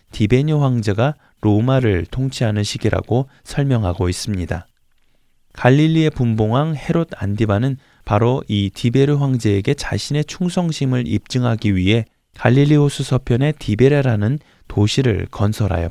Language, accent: Korean, native